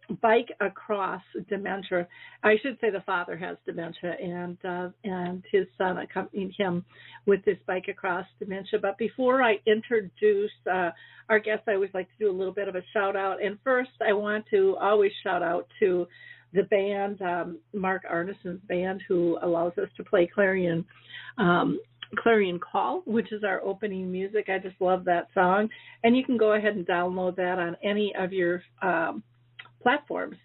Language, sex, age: English, female, 50-69